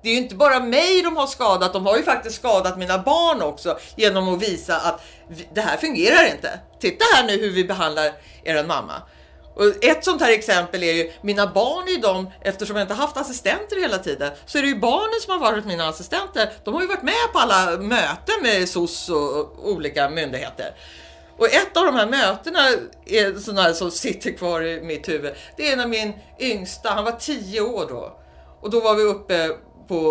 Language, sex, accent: English, female, Swedish